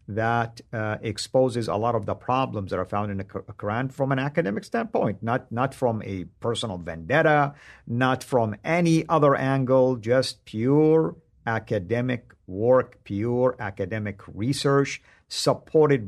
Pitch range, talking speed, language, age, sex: 105-140 Hz, 140 wpm, English, 50-69, male